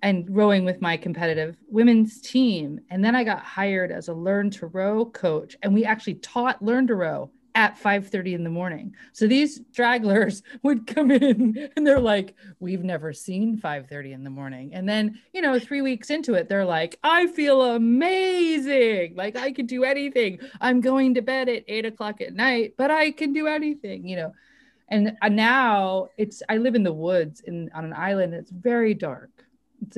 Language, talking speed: English, 190 wpm